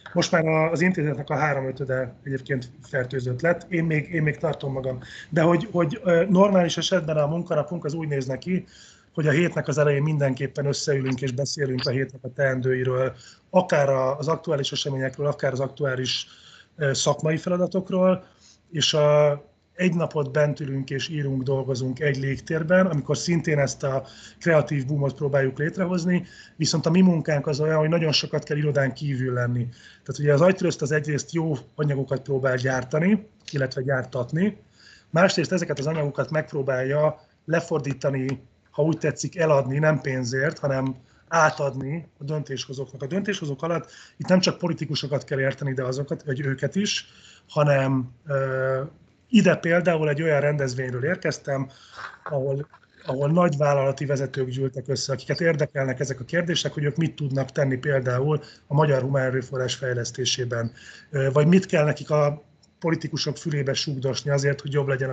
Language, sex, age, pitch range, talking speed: Hungarian, male, 30-49, 135-160 Hz, 150 wpm